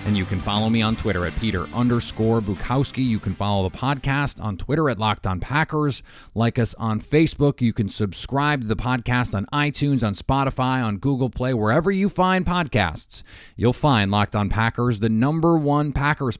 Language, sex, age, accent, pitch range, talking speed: English, male, 30-49, American, 105-130 Hz, 190 wpm